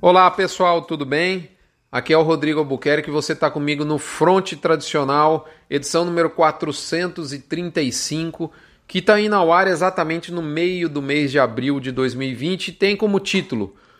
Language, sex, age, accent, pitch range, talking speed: Portuguese, male, 40-59, Brazilian, 155-195 Hz, 160 wpm